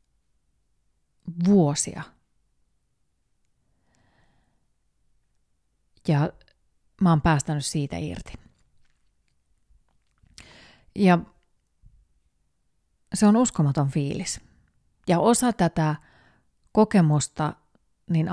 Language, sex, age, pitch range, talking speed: Finnish, female, 30-49, 150-175 Hz, 55 wpm